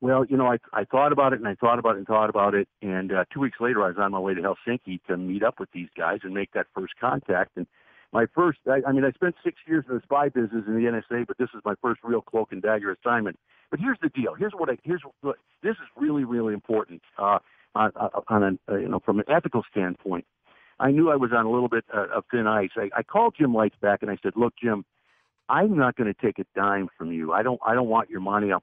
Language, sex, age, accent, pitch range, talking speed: English, male, 50-69, American, 105-140 Hz, 275 wpm